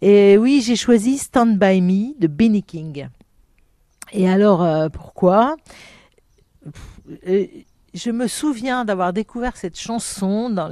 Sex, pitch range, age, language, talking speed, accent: female, 170-230 Hz, 50-69, French, 135 wpm, French